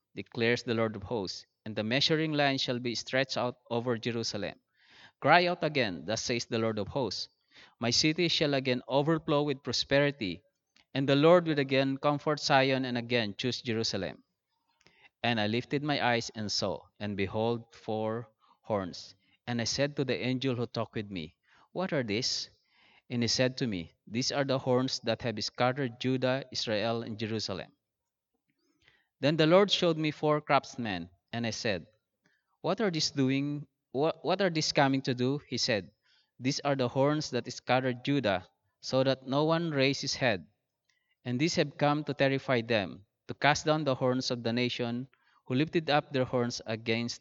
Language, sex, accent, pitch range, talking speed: English, male, Filipino, 115-140 Hz, 180 wpm